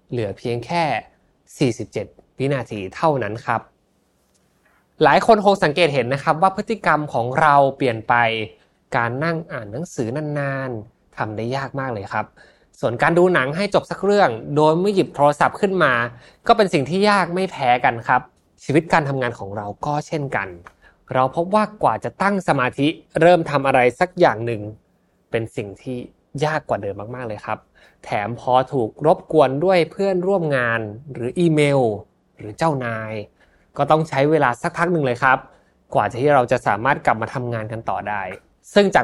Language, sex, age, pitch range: Thai, male, 20-39, 115-165 Hz